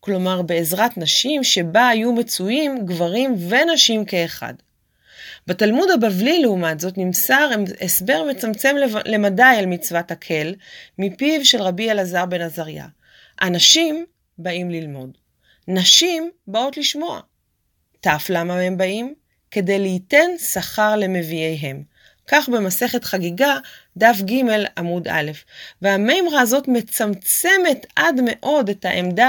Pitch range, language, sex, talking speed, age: 185-255 Hz, Hebrew, female, 110 wpm, 30-49